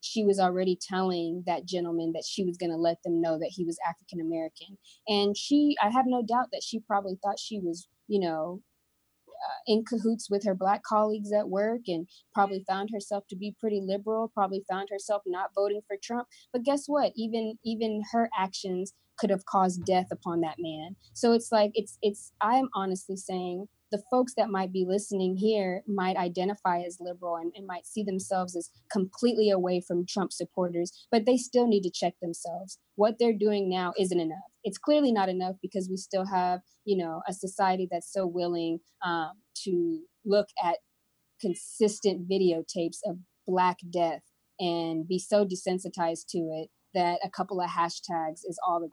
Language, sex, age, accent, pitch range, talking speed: English, female, 20-39, American, 175-210 Hz, 185 wpm